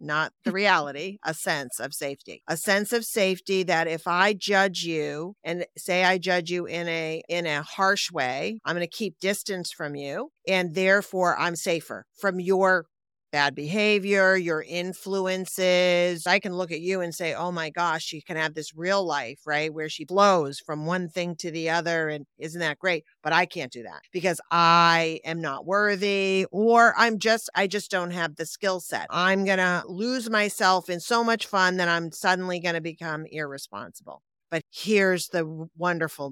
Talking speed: 185 wpm